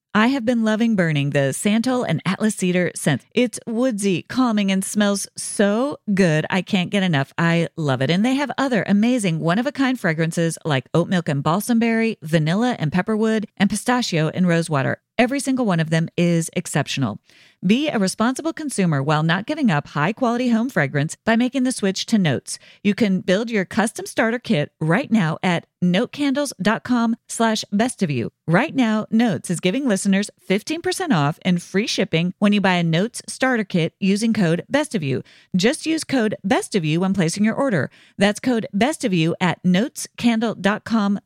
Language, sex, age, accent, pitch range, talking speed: English, female, 40-59, American, 165-230 Hz, 185 wpm